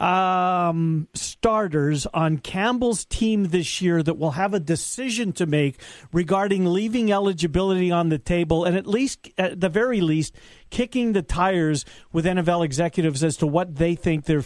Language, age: English, 50-69